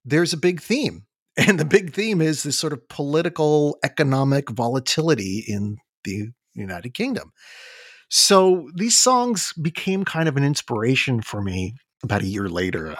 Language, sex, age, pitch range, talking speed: English, male, 40-59, 100-150 Hz, 150 wpm